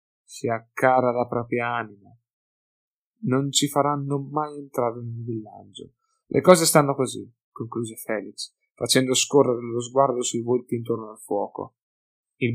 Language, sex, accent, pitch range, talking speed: Italian, male, native, 115-140 Hz, 140 wpm